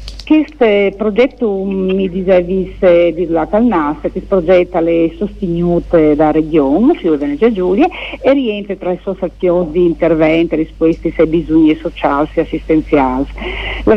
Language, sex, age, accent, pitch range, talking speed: Italian, female, 50-69, native, 160-195 Hz, 145 wpm